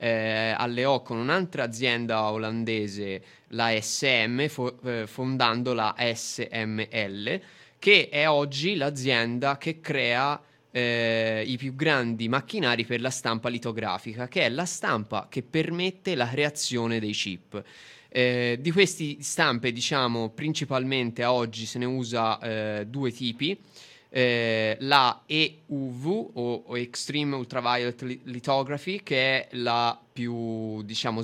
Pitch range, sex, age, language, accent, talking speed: 115-140 Hz, male, 20-39, Italian, native, 120 wpm